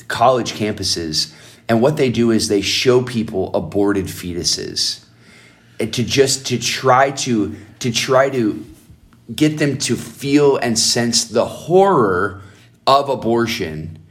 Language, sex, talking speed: English, male, 130 wpm